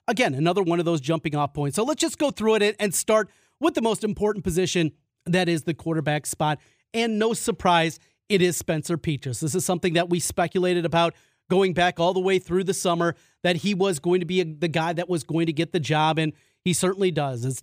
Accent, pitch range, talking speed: American, 155-190 Hz, 230 wpm